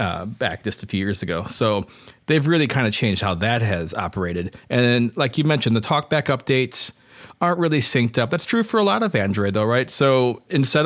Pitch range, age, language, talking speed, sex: 100-125 Hz, 30-49, English, 215 wpm, male